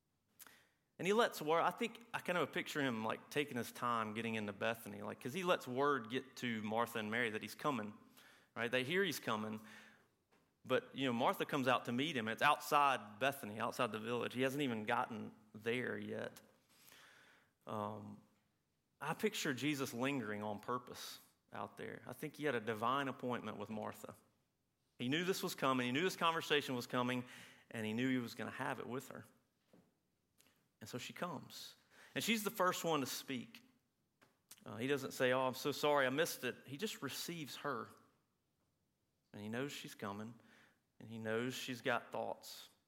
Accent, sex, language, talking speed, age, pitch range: American, male, English, 190 wpm, 30-49, 115-145 Hz